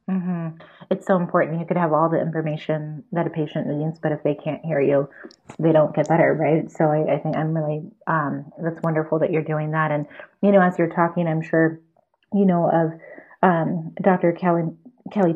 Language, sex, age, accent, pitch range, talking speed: English, female, 30-49, American, 155-175 Hz, 205 wpm